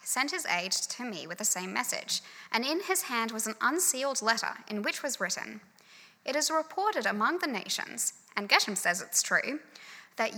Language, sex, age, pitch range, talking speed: English, female, 10-29, 215-290 Hz, 190 wpm